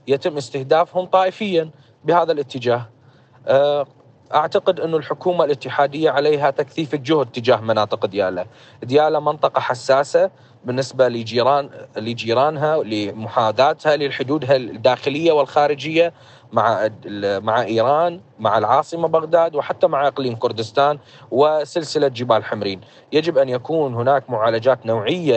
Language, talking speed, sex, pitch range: Arabic, 105 wpm, male, 120-155 Hz